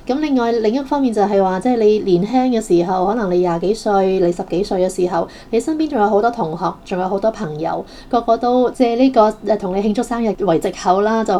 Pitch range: 180-225 Hz